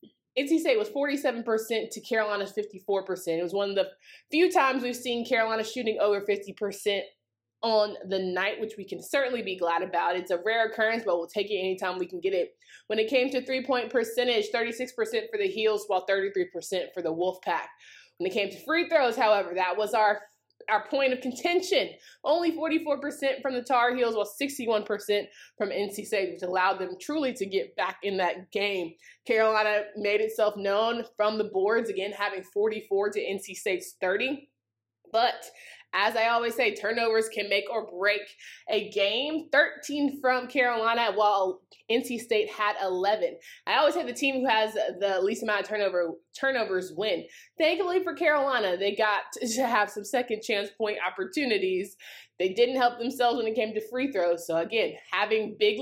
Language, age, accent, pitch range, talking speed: English, 20-39, American, 195-255 Hz, 175 wpm